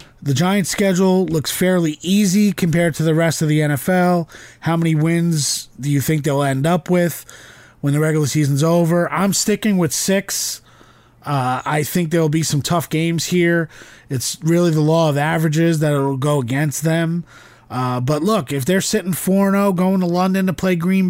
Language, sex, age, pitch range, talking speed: English, male, 30-49, 135-175 Hz, 190 wpm